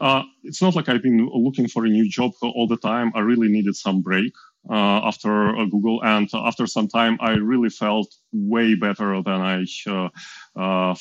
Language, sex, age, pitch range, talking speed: English, male, 30-49, 100-125 Hz, 195 wpm